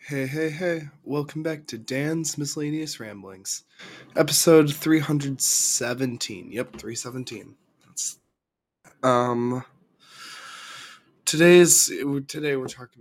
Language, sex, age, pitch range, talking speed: English, male, 20-39, 115-155 Hz, 105 wpm